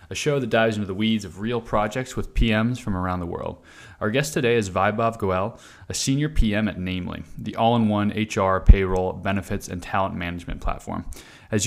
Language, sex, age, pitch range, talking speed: English, male, 20-39, 95-115 Hz, 190 wpm